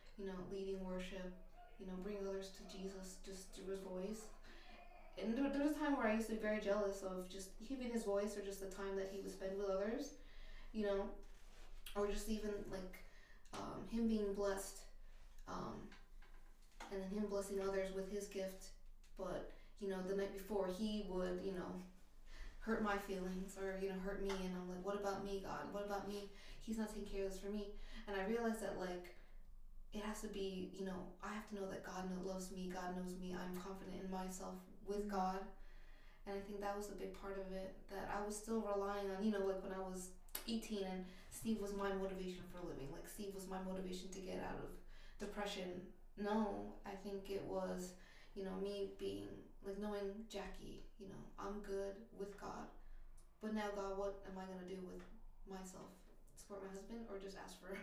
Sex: female